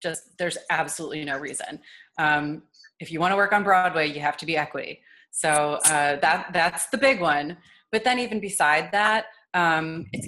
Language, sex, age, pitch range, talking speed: English, female, 30-49, 150-185 Hz, 180 wpm